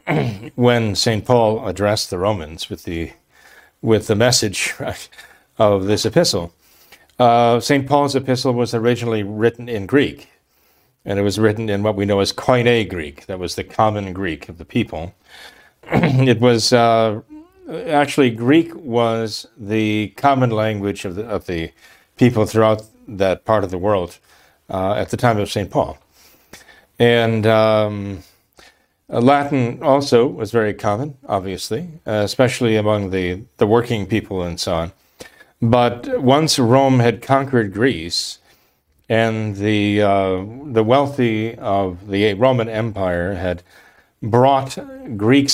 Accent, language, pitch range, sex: American, English, 100-125 Hz, male